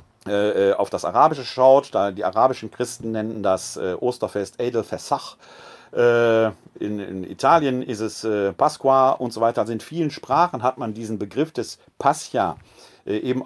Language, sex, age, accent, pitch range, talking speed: German, male, 40-59, German, 105-125 Hz, 135 wpm